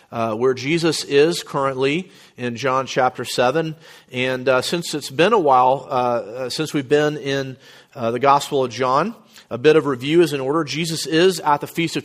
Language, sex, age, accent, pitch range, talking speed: English, male, 40-59, American, 130-160 Hz, 195 wpm